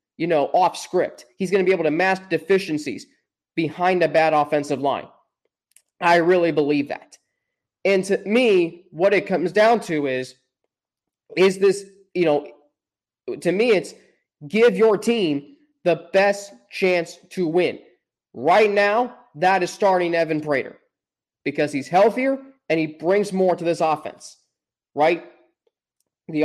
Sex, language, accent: male, English, American